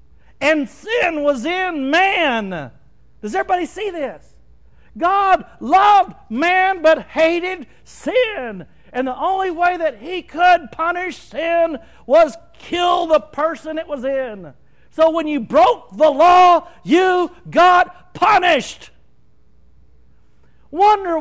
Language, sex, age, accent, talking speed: English, male, 60-79, American, 115 wpm